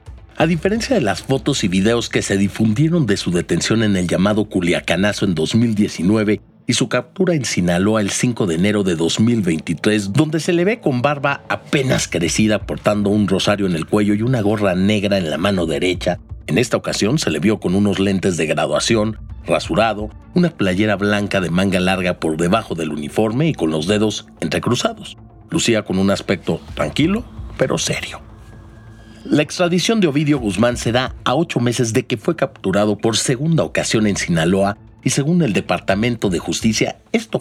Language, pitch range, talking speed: Spanish, 100-125 Hz, 180 wpm